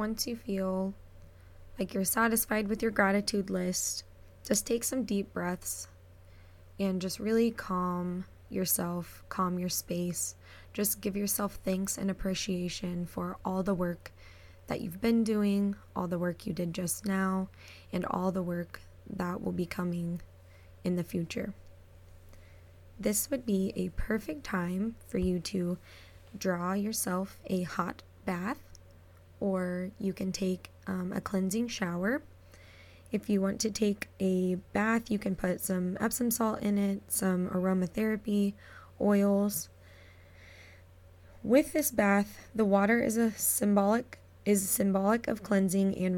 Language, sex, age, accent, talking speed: English, female, 20-39, American, 140 wpm